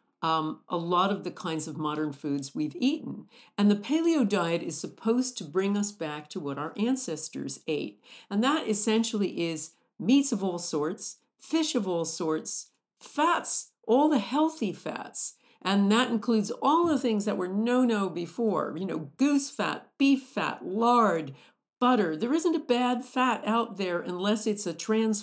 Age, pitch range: 50-69, 175-240 Hz